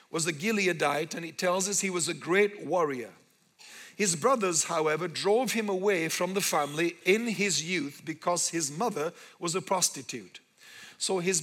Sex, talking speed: male, 170 wpm